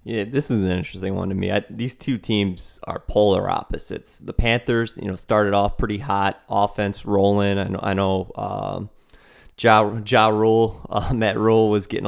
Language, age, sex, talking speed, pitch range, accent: English, 20-39, male, 190 wpm, 95-105 Hz, American